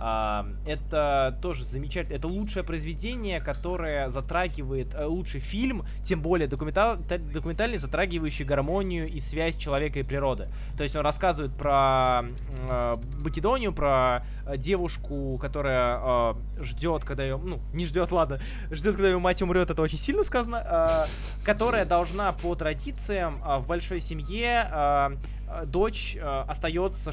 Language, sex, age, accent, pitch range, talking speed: Russian, male, 20-39, native, 130-175 Hz, 120 wpm